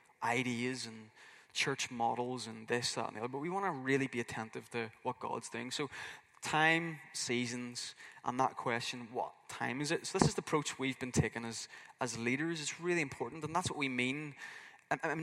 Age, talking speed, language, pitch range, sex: 20-39, 200 wpm, English, 125-155 Hz, male